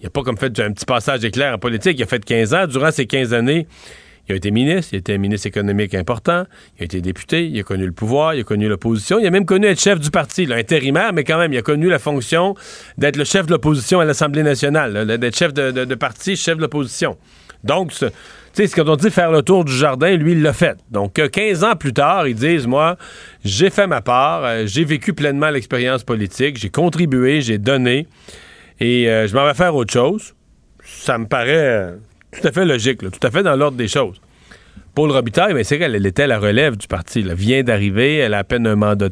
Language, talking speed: French, 245 wpm